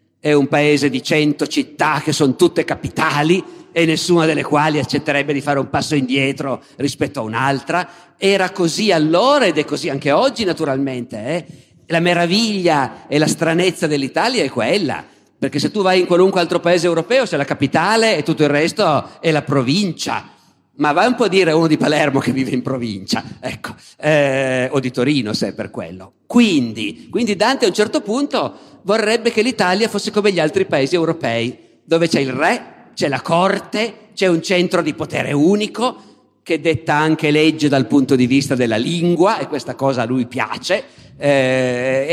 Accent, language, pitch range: native, Italian, 135-180 Hz